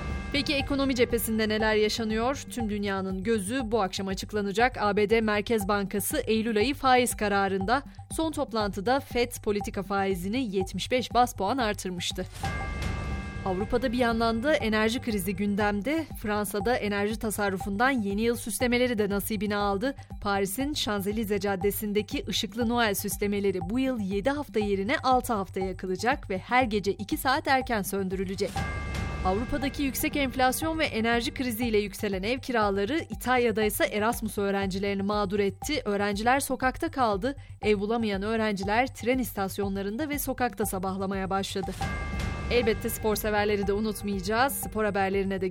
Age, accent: 30-49, native